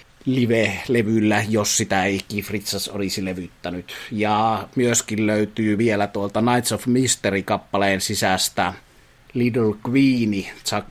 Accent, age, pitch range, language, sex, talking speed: native, 30-49, 95-115 Hz, Finnish, male, 105 wpm